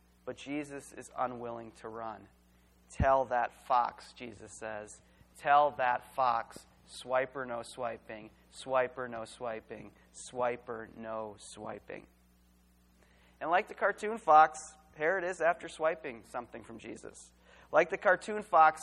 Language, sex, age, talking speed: English, male, 30-49, 125 wpm